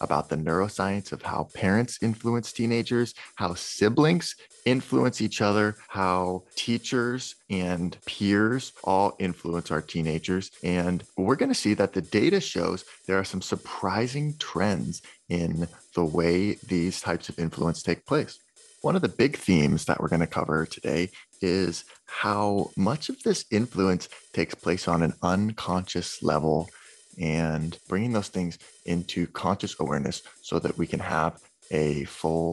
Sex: male